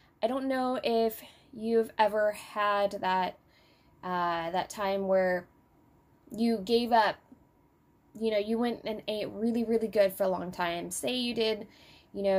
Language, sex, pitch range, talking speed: English, female, 190-230 Hz, 160 wpm